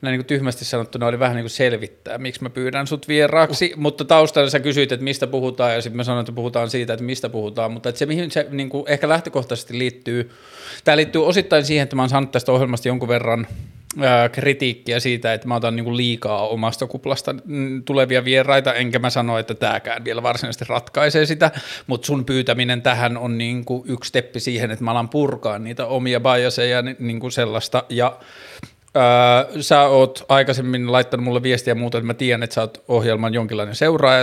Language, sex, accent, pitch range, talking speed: Finnish, male, native, 120-135 Hz, 200 wpm